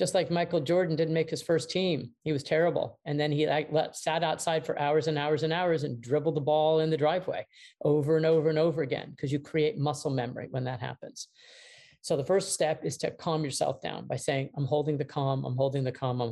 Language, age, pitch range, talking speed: English, 40-59, 145-185 Hz, 235 wpm